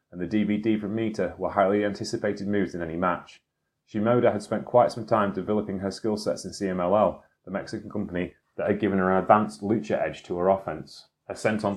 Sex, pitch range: male, 95-115 Hz